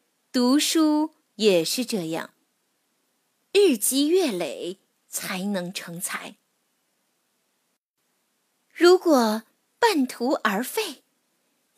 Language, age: Chinese, 20-39